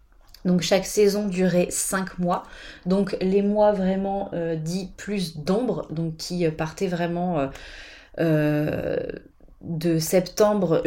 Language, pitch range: French, 160-210 Hz